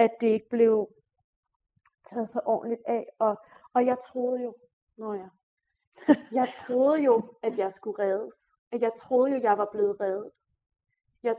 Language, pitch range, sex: Danish, 215-255 Hz, female